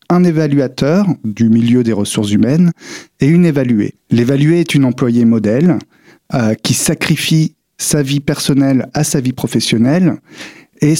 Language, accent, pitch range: French, French, 120-155 Hz